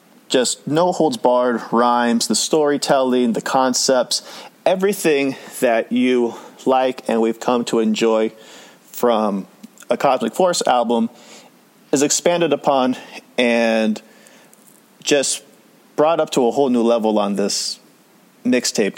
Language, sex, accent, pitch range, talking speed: English, male, American, 115-140 Hz, 120 wpm